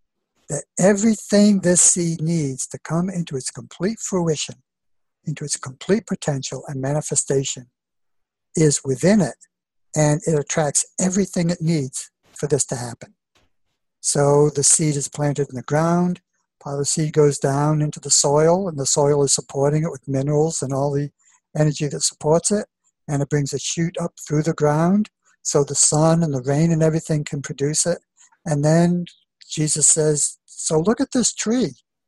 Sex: male